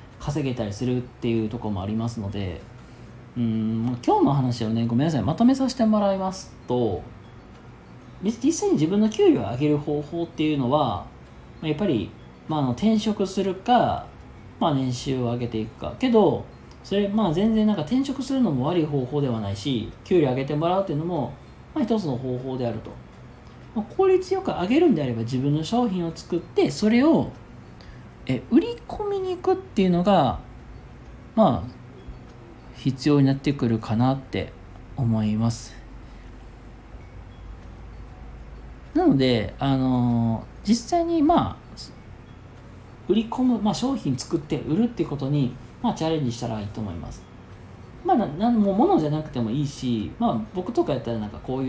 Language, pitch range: Japanese, 110-175 Hz